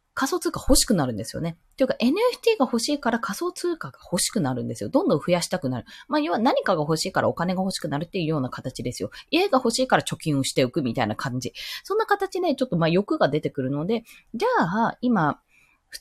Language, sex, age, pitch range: Japanese, female, 20-39, 165-265 Hz